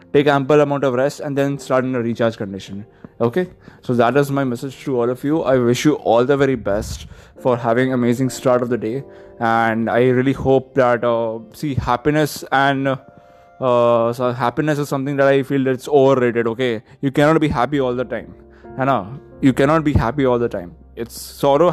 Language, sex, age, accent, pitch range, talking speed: English, male, 20-39, Indian, 125-150 Hz, 205 wpm